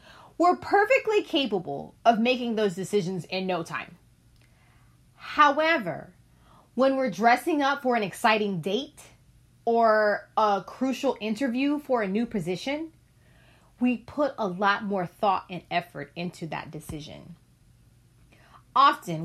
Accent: American